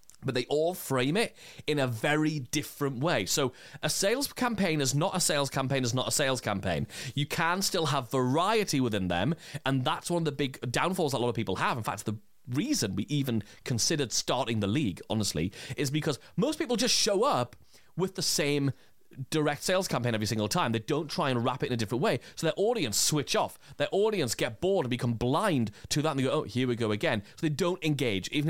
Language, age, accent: English, 30-49, British